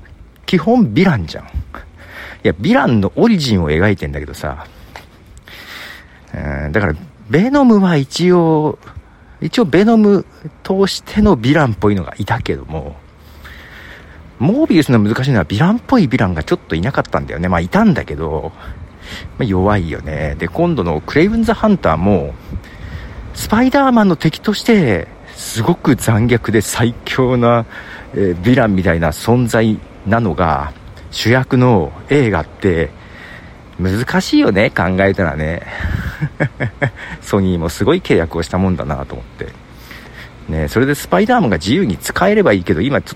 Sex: male